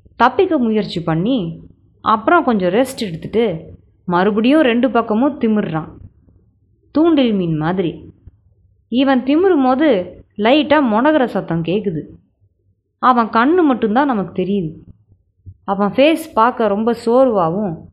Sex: female